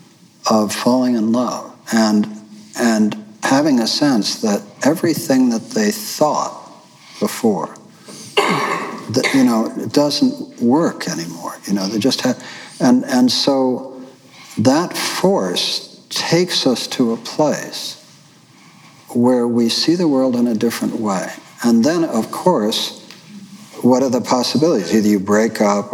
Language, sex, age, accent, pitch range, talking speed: English, male, 60-79, American, 105-165 Hz, 130 wpm